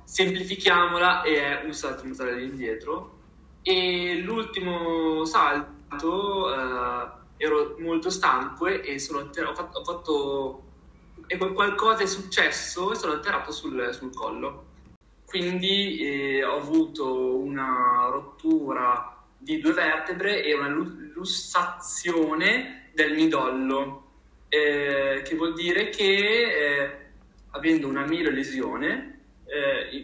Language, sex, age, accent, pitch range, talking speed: Italian, male, 20-39, native, 135-190 Hz, 115 wpm